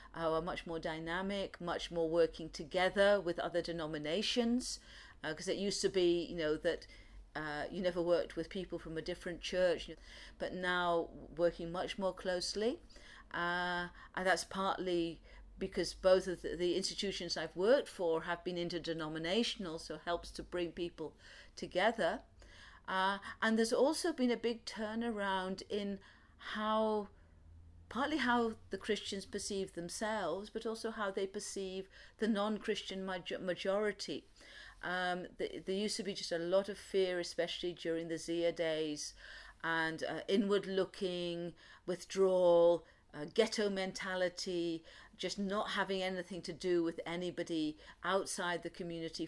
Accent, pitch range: British, 170-205 Hz